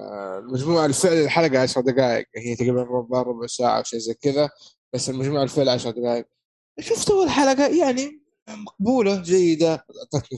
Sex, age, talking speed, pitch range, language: male, 20-39, 145 wpm, 130-170 Hz, Arabic